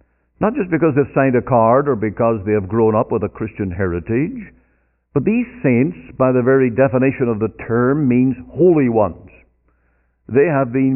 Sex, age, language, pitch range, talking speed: male, 60-79, English, 95-140 Hz, 180 wpm